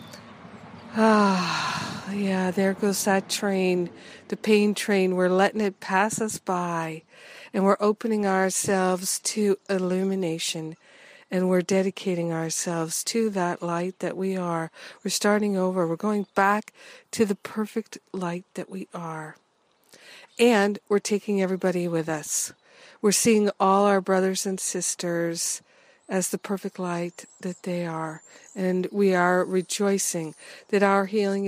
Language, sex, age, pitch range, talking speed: English, female, 50-69, 175-200 Hz, 135 wpm